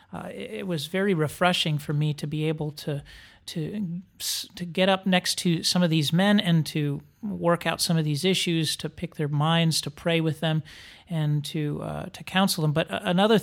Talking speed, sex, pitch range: 200 wpm, male, 150-175 Hz